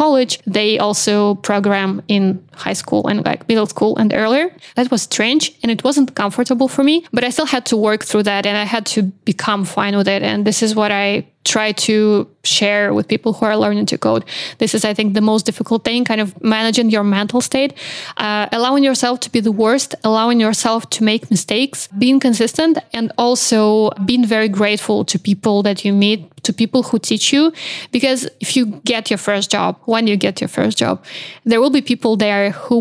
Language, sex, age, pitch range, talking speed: English, female, 20-39, 205-240 Hz, 210 wpm